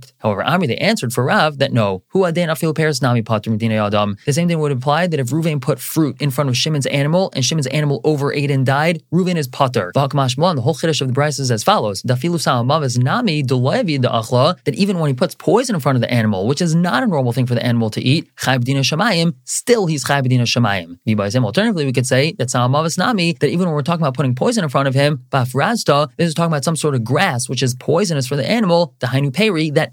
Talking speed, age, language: 200 wpm, 30-49, English